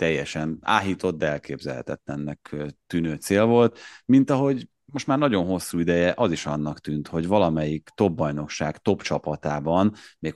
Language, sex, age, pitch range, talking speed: Hungarian, male, 30-49, 75-90 Hz, 145 wpm